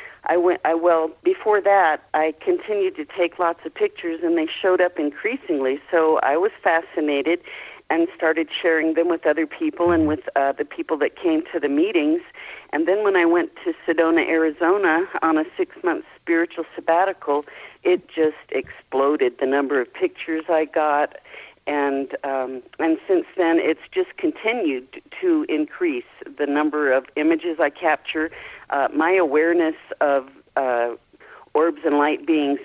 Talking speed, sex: 160 wpm, female